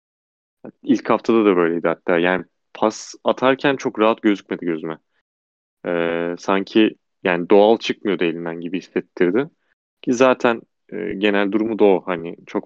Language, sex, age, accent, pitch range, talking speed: Turkish, male, 30-49, native, 90-105 Hz, 135 wpm